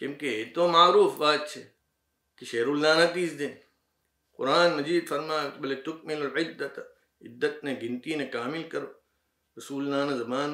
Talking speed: 140 wpm